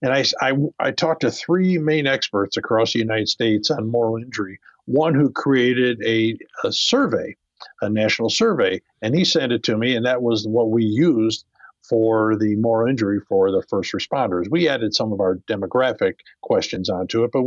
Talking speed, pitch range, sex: 185 wpm, 105-130 Hz, male